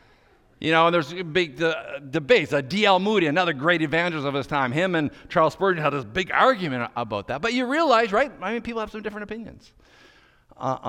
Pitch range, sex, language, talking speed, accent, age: 105-140 Hz, male, English, 205 wpm, American, 50-69